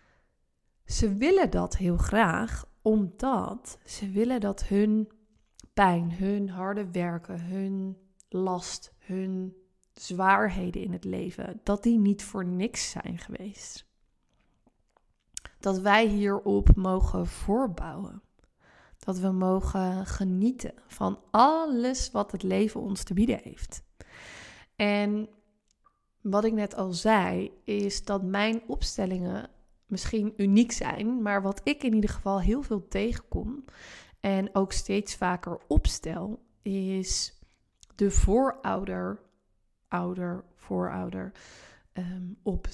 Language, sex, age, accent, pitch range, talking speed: Dutch, female, 20-39, Dutch, 185-215 Hz, 110 wpm